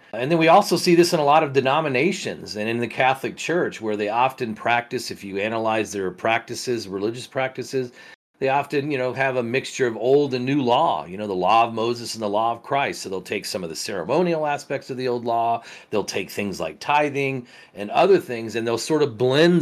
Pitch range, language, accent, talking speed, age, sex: 105-135 Hz, English, American, 230 wpm, 40-59, male